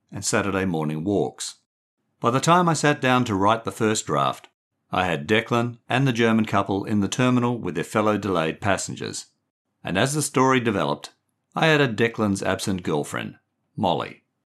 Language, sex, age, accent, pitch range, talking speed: English, male, 50-69, Australian, 95-125 Hz, 170 wpm